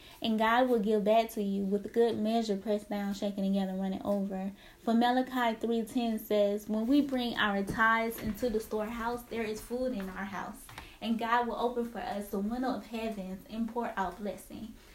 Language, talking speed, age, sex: English, 195 wpm, 10-29, female